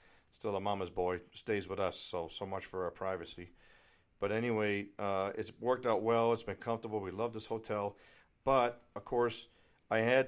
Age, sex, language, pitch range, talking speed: 50-69, male, English, 100-115 Hz, 185 wpm